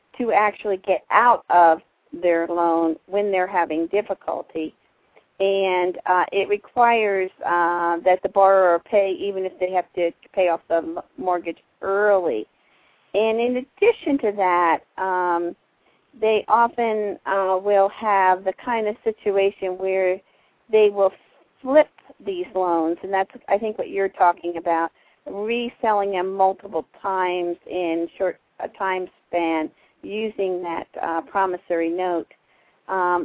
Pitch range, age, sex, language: 180-225 Hz, 50-69, female, English